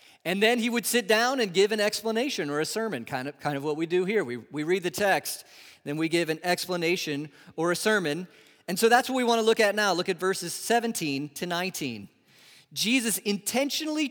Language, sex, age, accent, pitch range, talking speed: English, male, 40-59, American, 140-195 Hz, 220 wpm